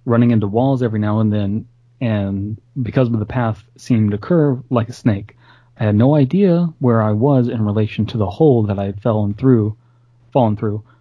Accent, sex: American, male